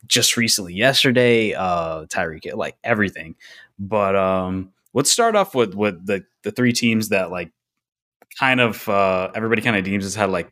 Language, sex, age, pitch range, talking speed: English, male, 20-39, 95-115 Hz, 170 wpm